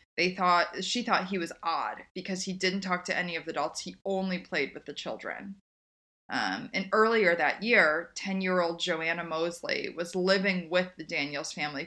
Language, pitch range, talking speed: English, 160-190 Hz, 185 wpm